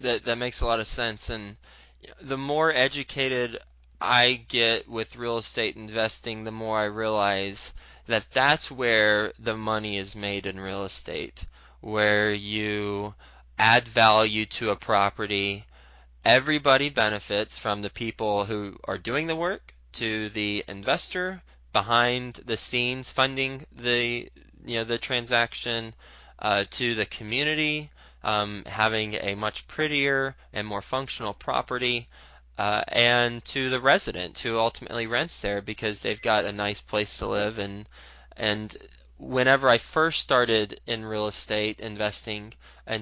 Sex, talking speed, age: male, 140 wpm, 20-39